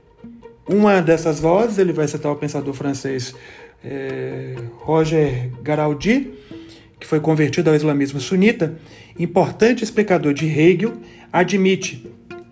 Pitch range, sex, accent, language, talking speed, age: 150-200 Hz, male, Brazilian, Portuguese, 110 wpm, 40-59